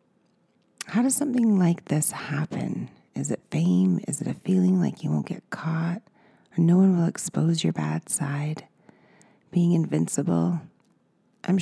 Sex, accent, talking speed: female, American, 150 wpm